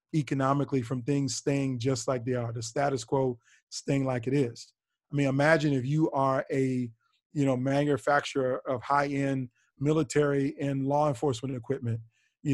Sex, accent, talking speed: male, American, 160 wpm